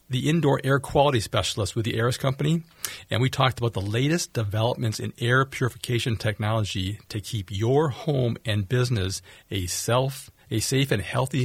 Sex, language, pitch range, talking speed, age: male, English, 105-130 Hz, 160 wpm, 40-59